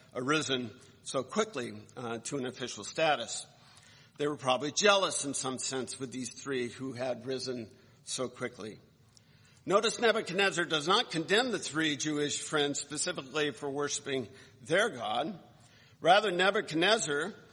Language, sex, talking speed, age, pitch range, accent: English, male, 135 wpm, 50-69, 125-165 Hz, American